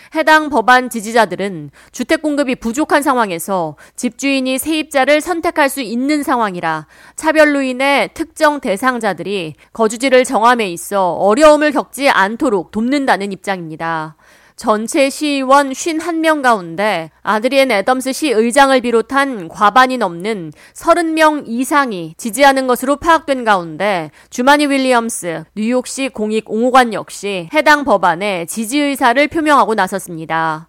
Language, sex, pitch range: Korean, female, 195-275 Hz